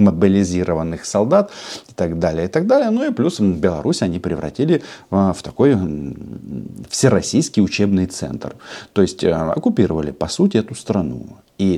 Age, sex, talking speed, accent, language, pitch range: 40-59, male, 140 wpm, native, Russian, 85-110 Hz